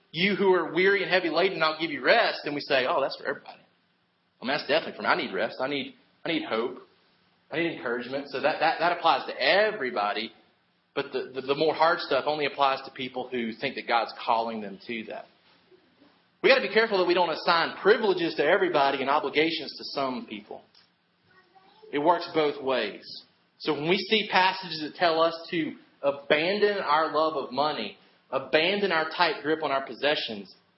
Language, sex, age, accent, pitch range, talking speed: English, male, 30-49, American, 135-185 Hz, 200 wpm